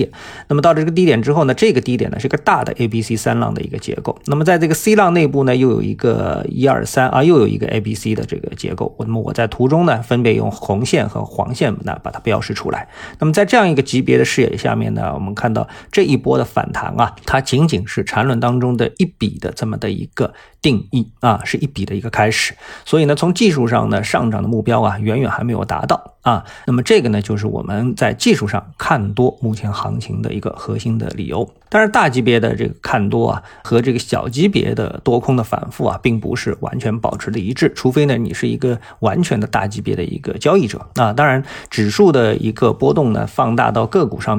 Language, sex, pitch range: Chinese, male, 110-135 Hz